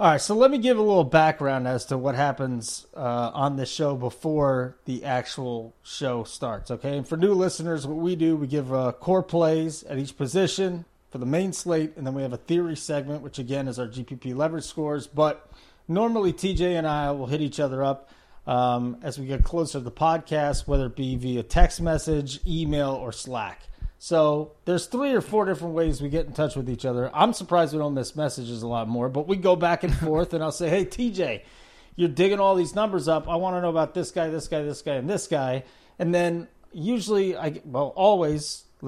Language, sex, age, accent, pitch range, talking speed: English, male, 30-49, American, 135-175 Hz, 220 wpm